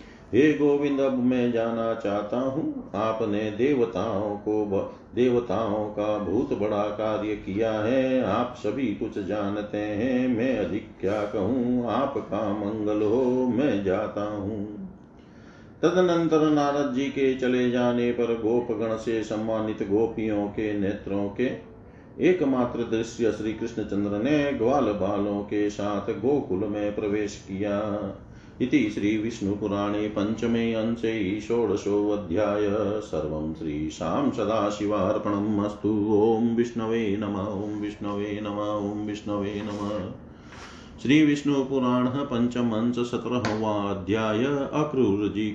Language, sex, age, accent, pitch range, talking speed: Hindi, male, 40-59, native, 105-120 Hz, 105 wpm